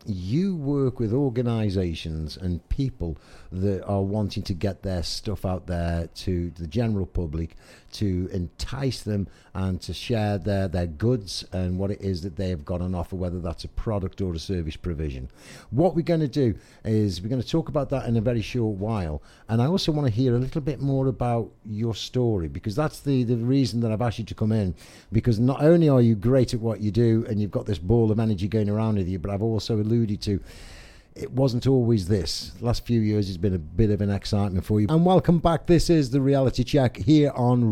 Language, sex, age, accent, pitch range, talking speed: English, male, 60-79, British, 95-135 Hz, 225 wpm